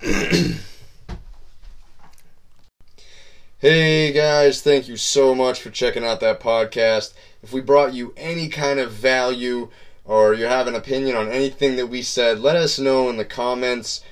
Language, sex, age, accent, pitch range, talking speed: English, male, 20-39, American, 105-130 Hz, 150 wpm